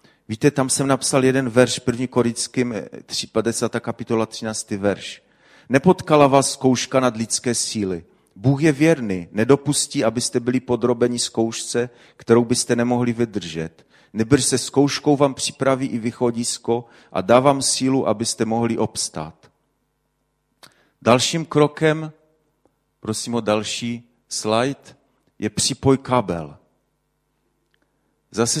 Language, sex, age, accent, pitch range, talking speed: Czech, male, 40-59, native, 110-130 Hz, 115 wpm